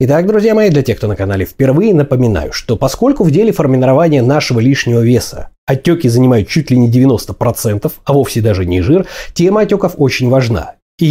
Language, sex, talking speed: Russian, male, 185 wpm